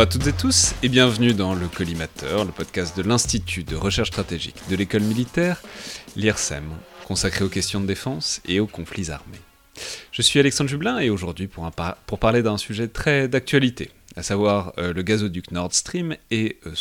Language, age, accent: French, 30-49, French